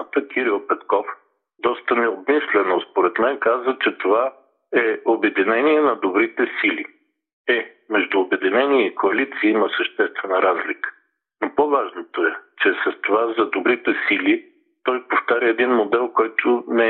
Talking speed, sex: 130 wpm, male